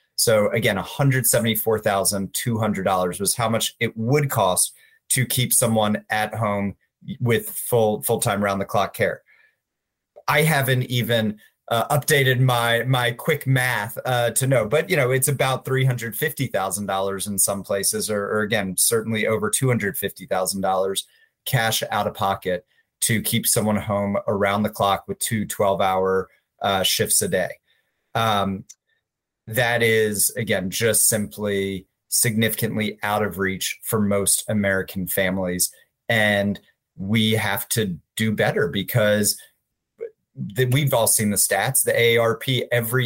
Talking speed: 130 wpm